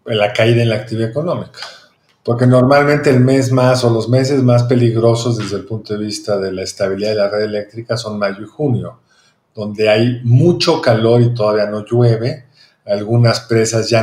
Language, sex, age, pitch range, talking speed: Spanish, male, 50-69, 110-145 Hz, 185 wpm